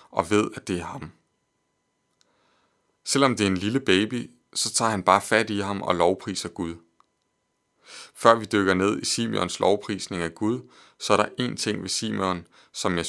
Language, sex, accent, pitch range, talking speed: Danish, male, native, 95-115 Hz, 185 wpm